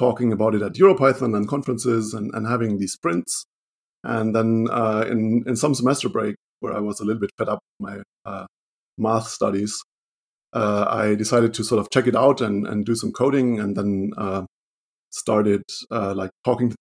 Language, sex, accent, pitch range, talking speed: English, male, German, 100-120 Hz, 195 wpm